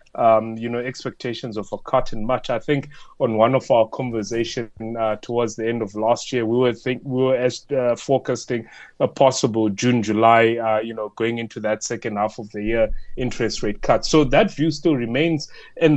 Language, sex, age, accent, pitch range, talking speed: English, male, 30-49, South African, 115-150 Hz, 205 wpm